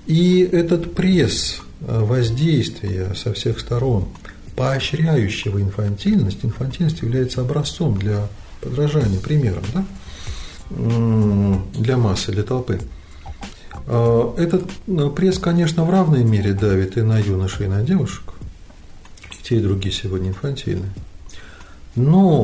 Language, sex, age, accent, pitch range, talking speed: Russian, male, 40-59, native, 100-150 Hz, 105 wpm